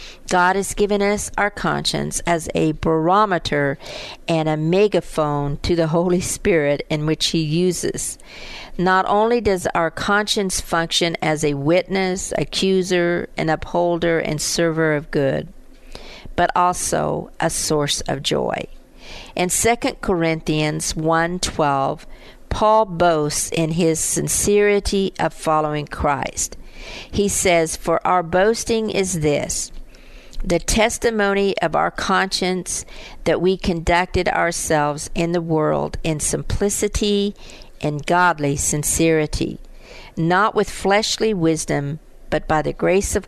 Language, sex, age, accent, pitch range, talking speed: English, female, 50-69, American, 155-190 Hz, 120 wpm